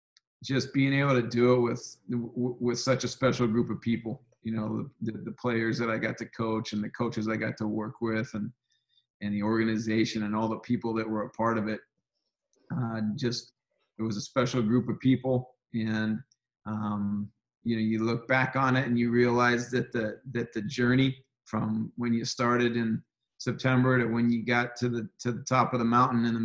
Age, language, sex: 40-59, English, male